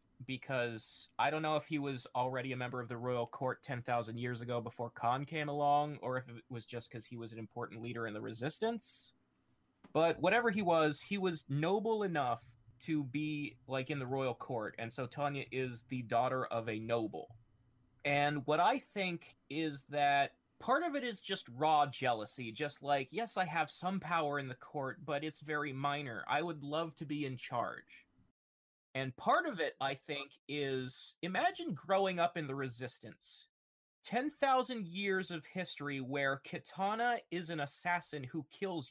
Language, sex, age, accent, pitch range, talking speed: English, male, 20-39, American, 130-175 Hz, 180 wpm